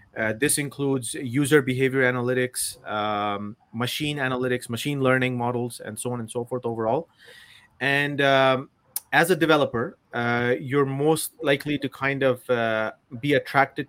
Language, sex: English, male